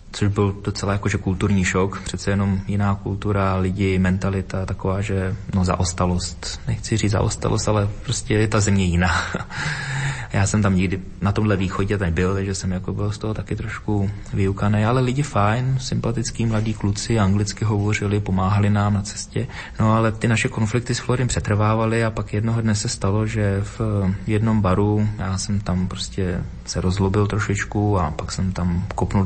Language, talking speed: Slovak, 170 wpm